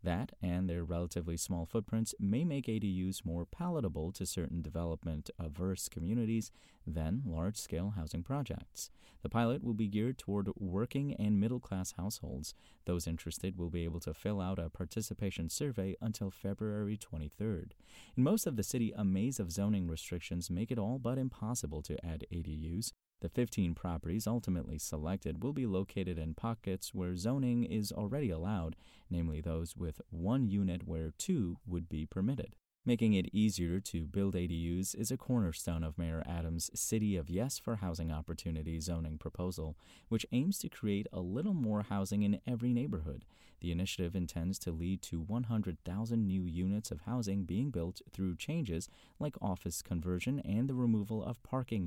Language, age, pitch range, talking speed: English, 30-49, 85-110 Hz, 160 wpm